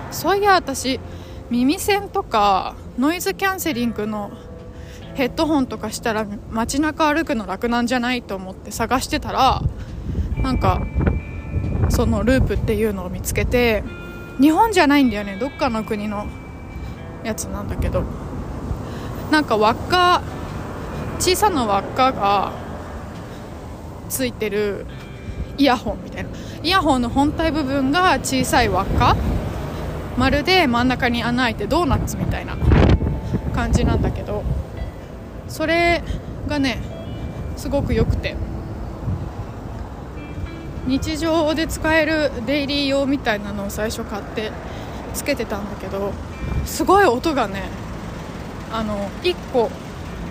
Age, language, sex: 20-39, Japanese, female